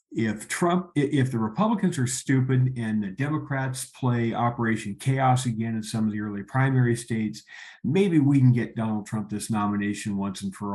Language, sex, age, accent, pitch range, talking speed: English, male, 50-69, American, 105-125 Hz, 180 wpm